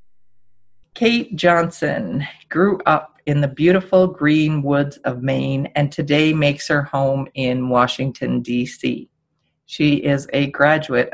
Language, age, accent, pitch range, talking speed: English, 40-59, American, 135-155 Hz, 125 wpm